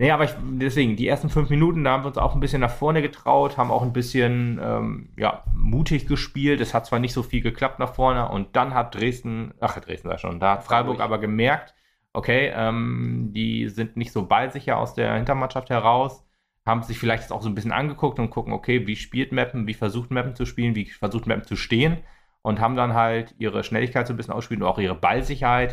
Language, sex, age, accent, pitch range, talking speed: German, male, 30-49, German, 100-125 Hz, 220 wpm